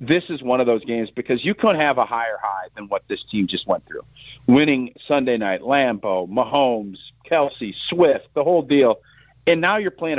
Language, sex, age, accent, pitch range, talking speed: English, male, 40-59, American, 125-170 Hz, 200 wpm